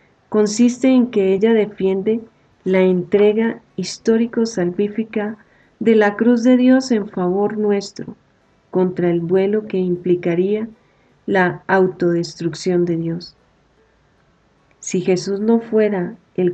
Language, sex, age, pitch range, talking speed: Spanish, female, 40-59, 180-210 Hz, 115 wpm